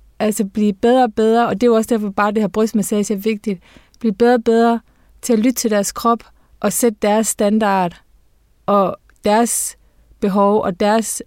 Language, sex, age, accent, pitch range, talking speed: Danish, female, 30-49, native, 195-230 Hz, 190 wpm